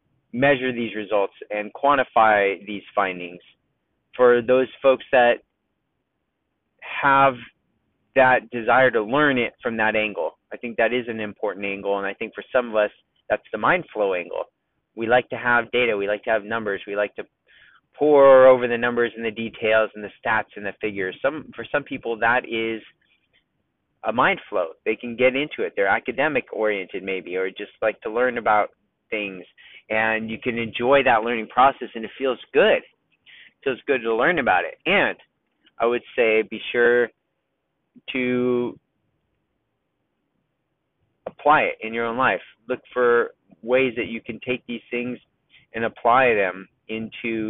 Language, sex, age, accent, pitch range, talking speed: English, male, 30-49, American, 110-130 Hz, 170 wpm